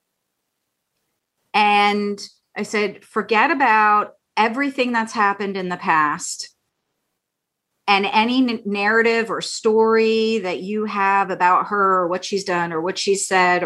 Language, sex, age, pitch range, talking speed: English, female, 30-49, 195-235 Hz, 125 wpm